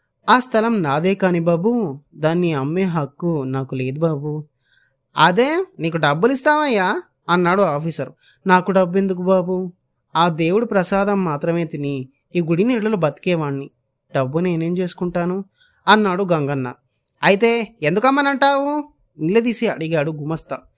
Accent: native